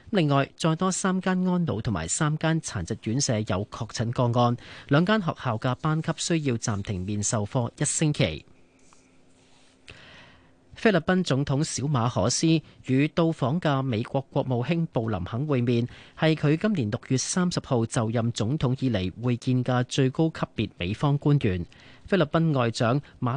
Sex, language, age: male, Chinese, 40-59